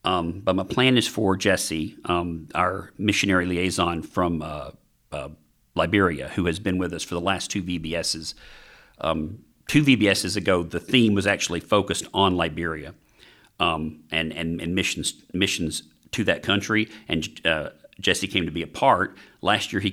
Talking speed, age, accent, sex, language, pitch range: 170 wpm, 40-59, American, male, English, 85-100 Hz